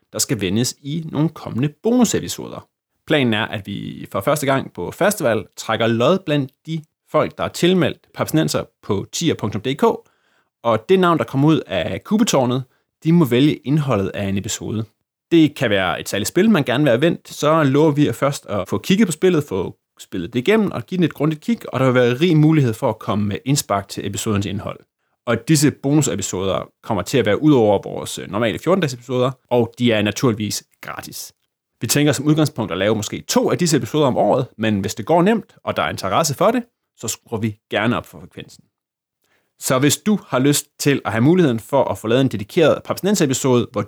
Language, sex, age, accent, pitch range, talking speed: Danish, male, 30-49, native, 110-160 Hz, 210 wpm